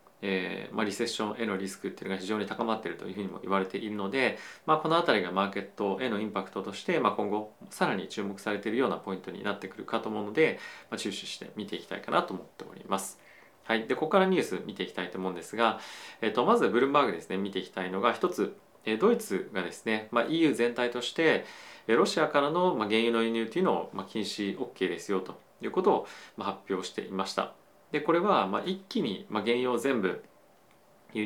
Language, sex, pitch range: Japanese, male, 95-125 Hz